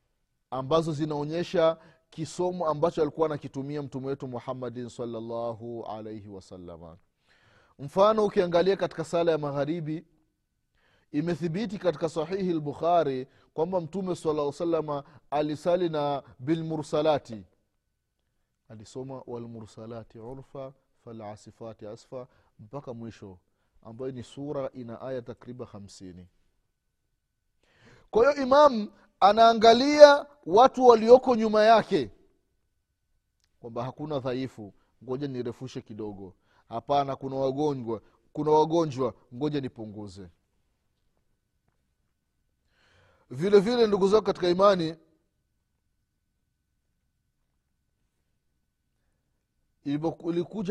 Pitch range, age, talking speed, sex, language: 120-170 Hz, 30-49, 80 wpm, male, Swahili